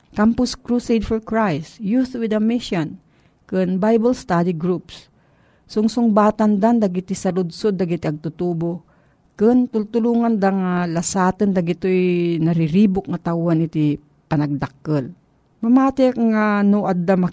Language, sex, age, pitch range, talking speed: Filipino, female, 50-69, 165-215 Hz, 120 wpm